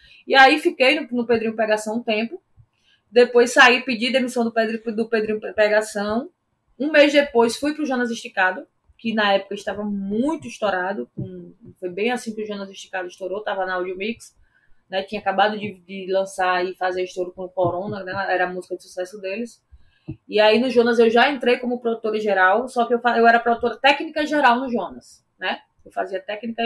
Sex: female